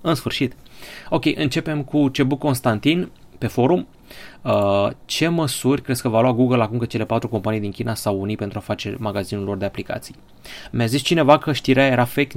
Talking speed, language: 195 wpm, Romanian